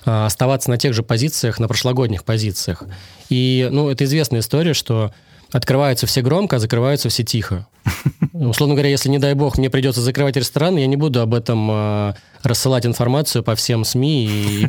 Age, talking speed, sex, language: 20-39, 180 wpm, male, Russian